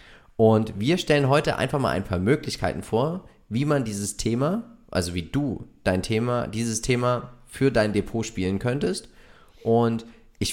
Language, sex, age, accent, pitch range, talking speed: German, male, 30-49, German, 95-130 Hz, 160 wpm